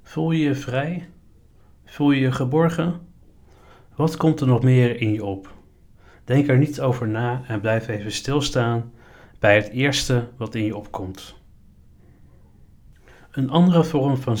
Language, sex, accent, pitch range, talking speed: Dutch, male, Dutch, 105-130 Hz, 150 wpm